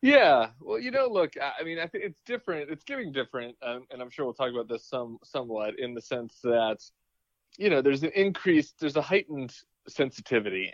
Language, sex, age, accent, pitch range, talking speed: English, male, 20-39, American, 105-135 Hz, 210 wpm